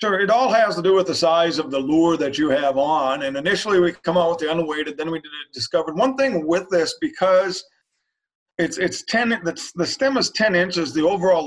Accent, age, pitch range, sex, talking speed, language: American, 40-59, 140-185 Hz, male, 235 wpm, English